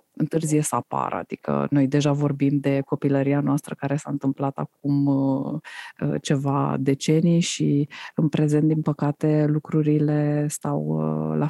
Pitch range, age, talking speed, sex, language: 125-155 Hz, 20-39, 125 wpm, female, Romanian